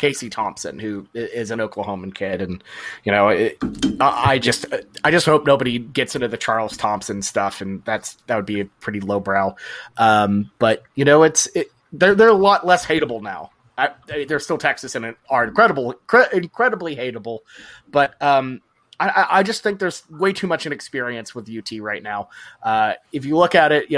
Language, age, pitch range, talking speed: English, 30-49, 120-180 Hz, 180 wpm